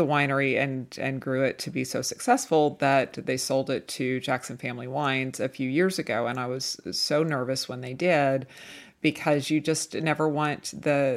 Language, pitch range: English, 130-145 Hz